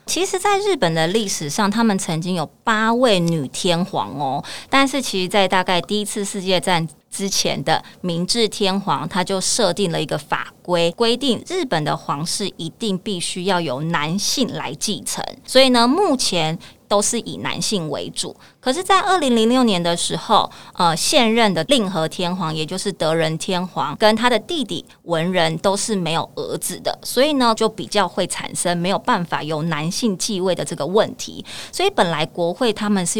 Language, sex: Chinese, female